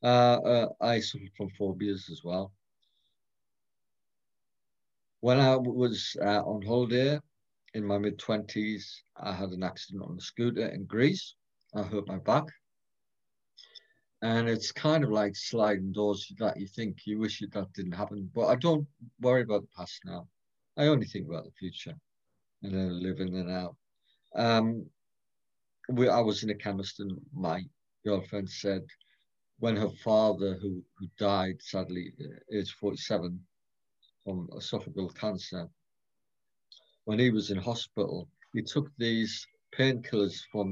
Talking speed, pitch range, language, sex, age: 145 wpm, 95-120 Hz, English, male, 50-69